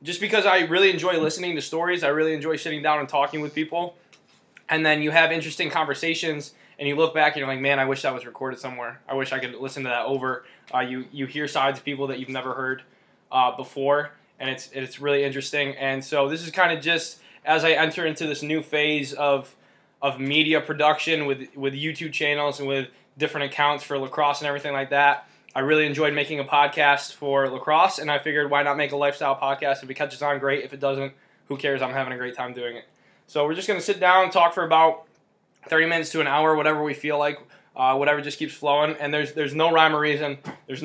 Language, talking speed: English, 240 wpm